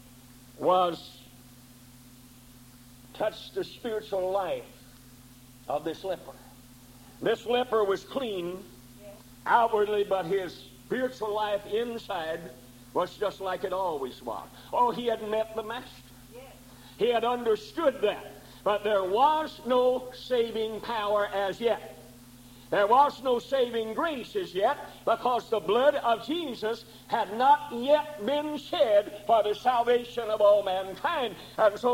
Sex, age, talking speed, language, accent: male, 60-79, 125 wpm, English, American